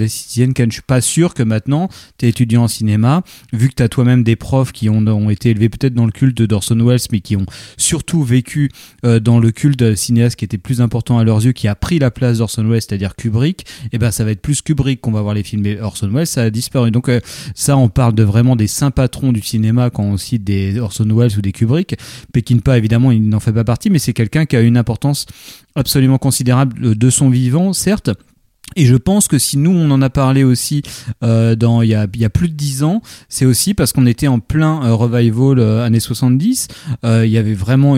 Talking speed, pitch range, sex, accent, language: 245 wpm, 115-135 Hz, male, French, French